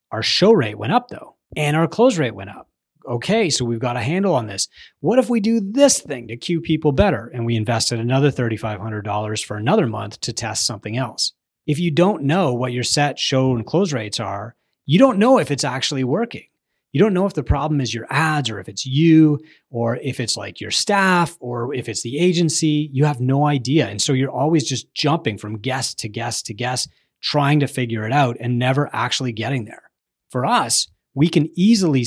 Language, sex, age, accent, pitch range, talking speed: English, male, 30-49, American, 120-155 Hz, 215 wpm